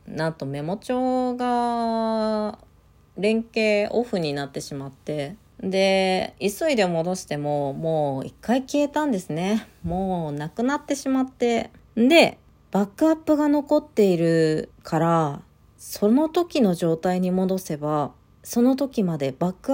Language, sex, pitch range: Japanese, female, 165-230 Hz